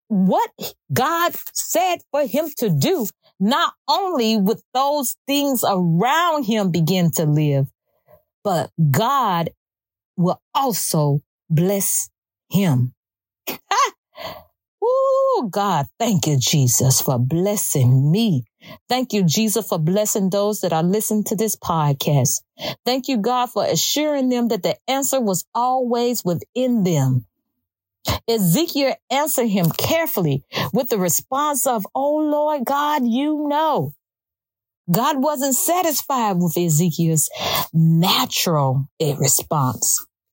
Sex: female